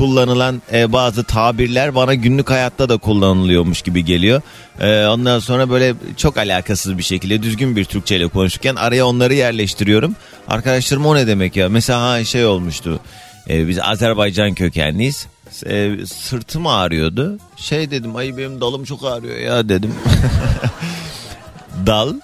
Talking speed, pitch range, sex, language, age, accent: 130 wpm, 90-125 Hz, male, Turkish, 30-49, native